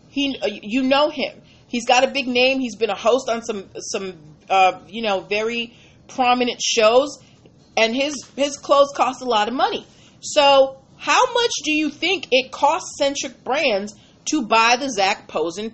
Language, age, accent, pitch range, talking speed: English, 40-59, American, 205-280 Hz, 175 wpm